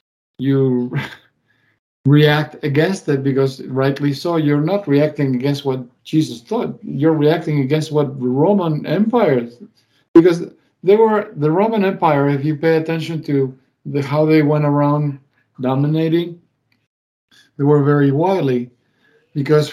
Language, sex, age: English, male, 50-69